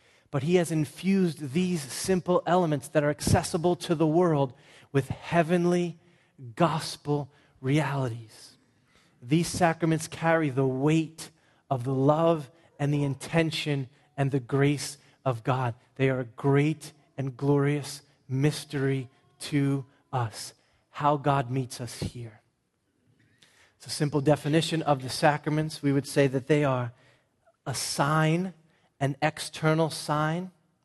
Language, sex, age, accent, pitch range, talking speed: English, male, 30-49, American, 130-160 Hz, 130 wpm